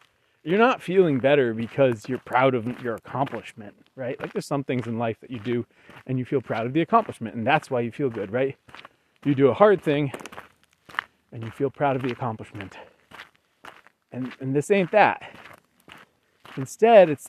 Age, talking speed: 30-49, 185 wpm